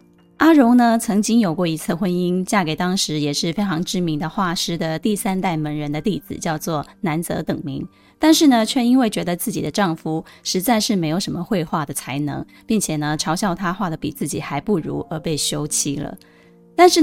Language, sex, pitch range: Chinese, female, 155-215 Hz